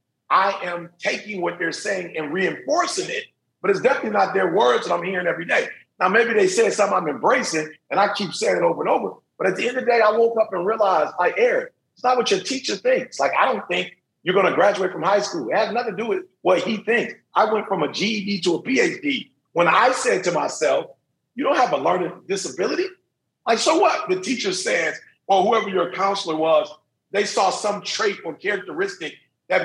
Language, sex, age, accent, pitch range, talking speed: English, male, 40-59, American, 150-245 Hz, 225 wpm